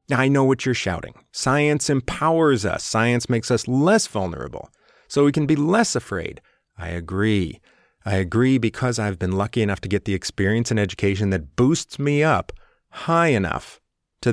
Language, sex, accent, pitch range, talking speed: English, male, American, 95-125 Hz, 170 wpm